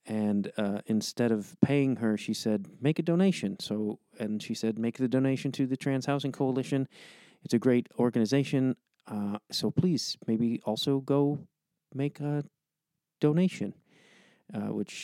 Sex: male